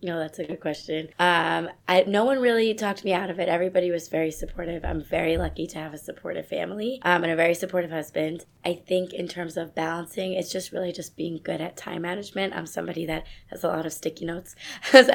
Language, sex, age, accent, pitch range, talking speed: English, female, 20-39, American, 155-180 Hz, 225 wpm